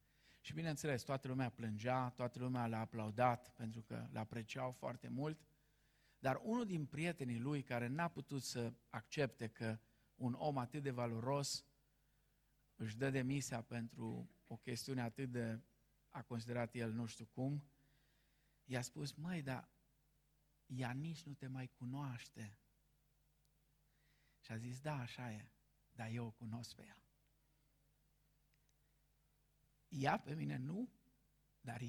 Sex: male